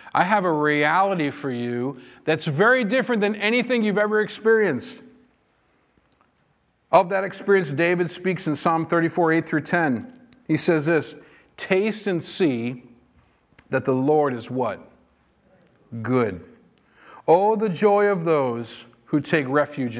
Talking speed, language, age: 135 wpm, English, 50-69